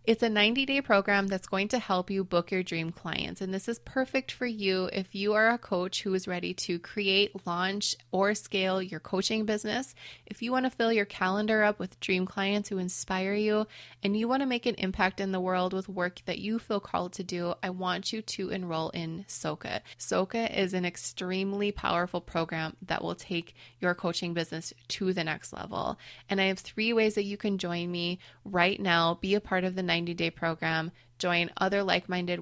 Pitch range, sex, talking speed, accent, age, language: 175-200 Hz, female, 205 wpm, American, 20-39, English